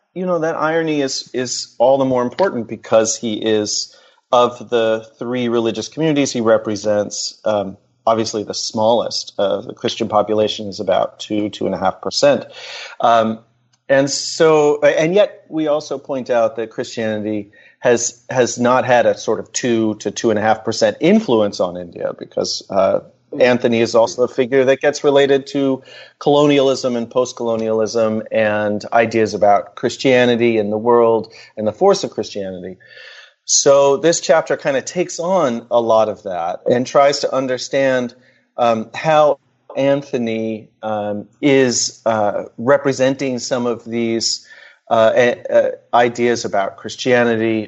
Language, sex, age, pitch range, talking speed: English, male, 30-49, 110-135 Hz, 150 wpm